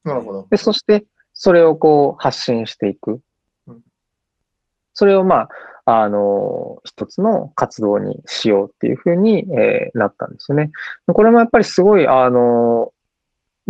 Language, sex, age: Japanese, male, 20-39